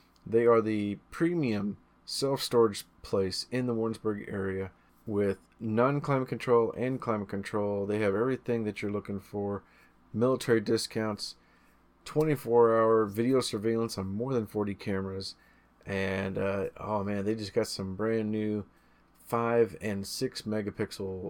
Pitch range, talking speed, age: 100-120 Hz, 130 wpm, 30-49